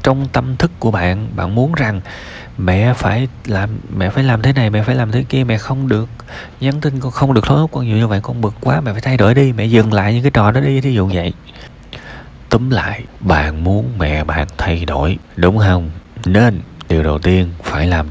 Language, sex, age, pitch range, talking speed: Vietnamese, male, 20-39, 80-110 Hz, 235 wpm